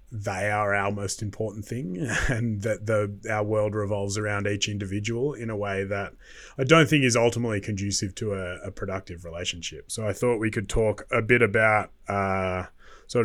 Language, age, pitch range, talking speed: English, 20-39, 100-115 Hz, 185 wpm